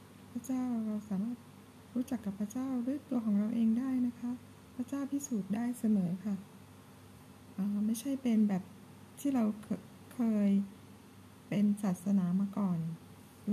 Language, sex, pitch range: Thai, female, 200-240 Hz